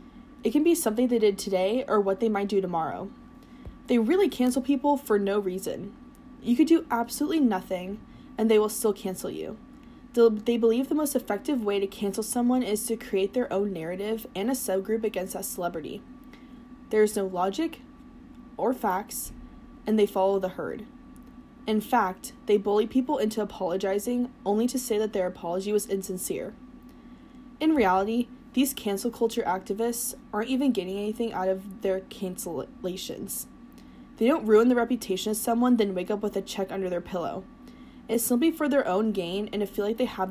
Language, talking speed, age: English, 180 wpm, 20-39